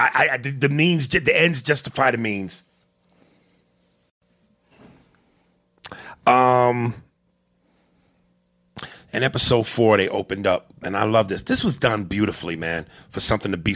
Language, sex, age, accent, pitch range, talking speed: English, male, 40-59, American, 95-130 Hz, 130 wpm